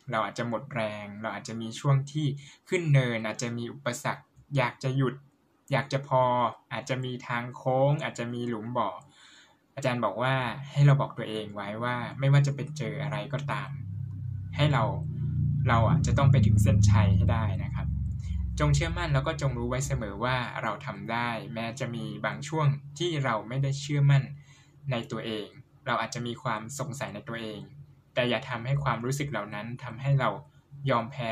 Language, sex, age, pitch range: Thai, male, 10-29, 115-140 Hz